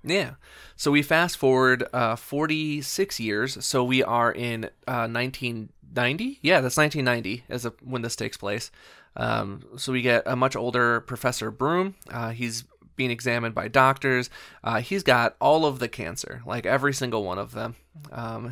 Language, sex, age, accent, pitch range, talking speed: English, male, 20-39, American, 120-145 Hz, 160 wpm